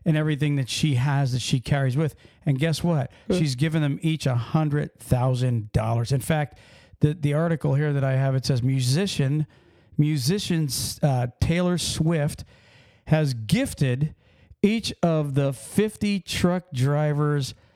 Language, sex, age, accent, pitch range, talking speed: English, male, 40-59, American, 125-160 Hz, 140 wpm